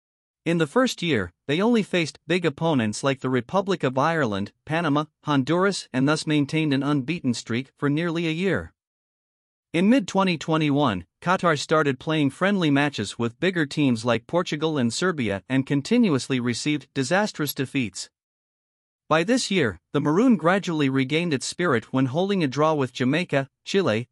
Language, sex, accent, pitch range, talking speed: English, male, American, 130-170 Hz, 150 wpm